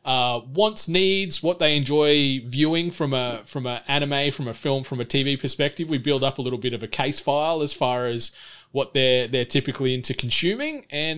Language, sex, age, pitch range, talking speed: English, male, 20-39, 125-145 Hz, 210 wpm